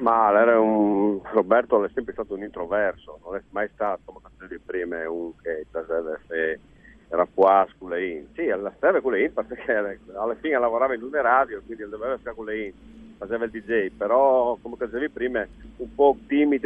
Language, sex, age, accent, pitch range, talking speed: Italian, male, 50-69, native, 110-125 Hz, 180 wpm